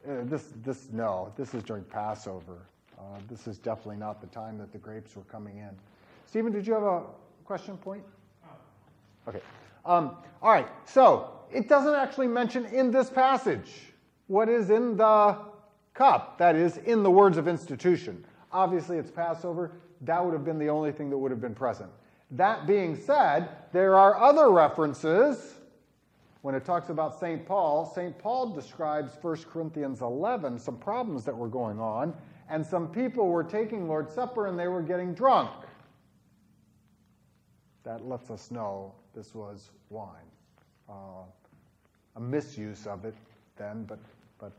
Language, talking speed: English, 160 wpm